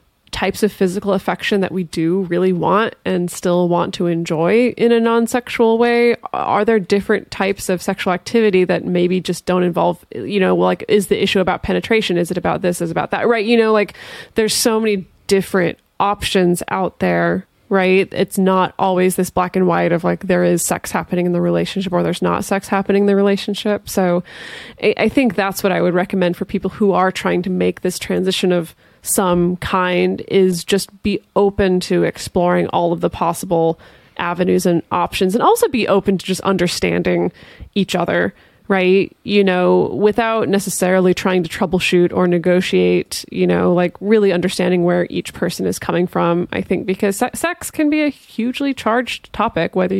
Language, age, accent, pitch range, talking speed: English, 20-39, American, 180-205 Hz, 185 wpm